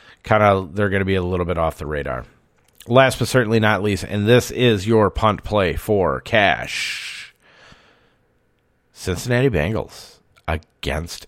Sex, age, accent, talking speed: male, 40-59, American, 145 wpm